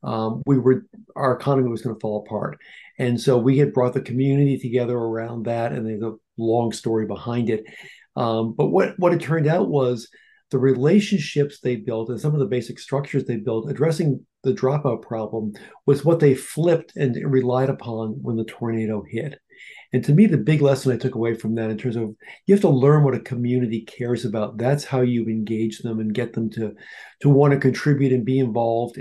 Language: English